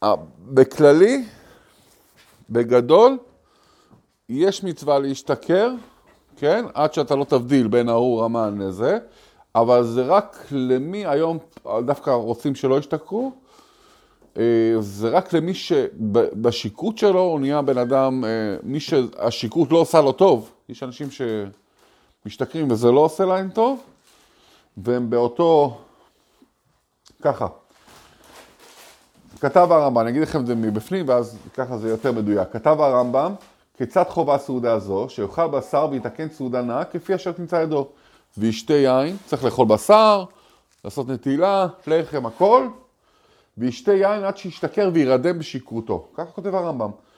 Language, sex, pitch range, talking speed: Hebrew, male, 125-185 Hz, 120 wpm